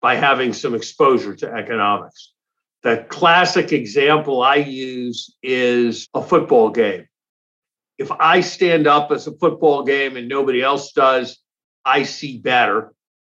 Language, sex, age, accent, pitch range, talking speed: English, male, 50-69, American, 130-165 Hz, 135 wpm